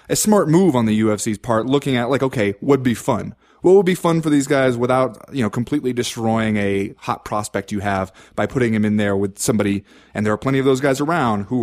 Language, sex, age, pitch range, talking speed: English, male, 30-49, 115-170 Hz, 250 wpm